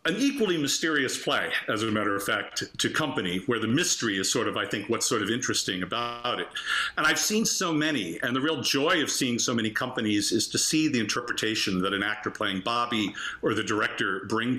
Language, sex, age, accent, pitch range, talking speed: English, male, 50-69, American, 110-135 Hz, 220 wpm